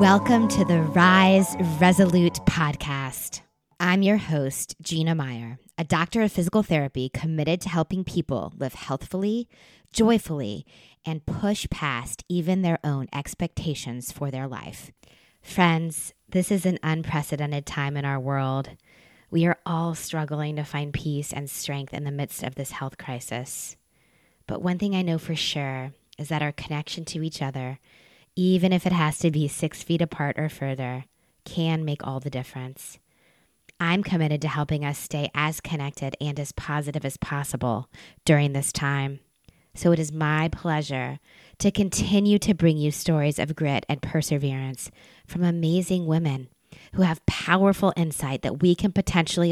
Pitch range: 140-170 Hz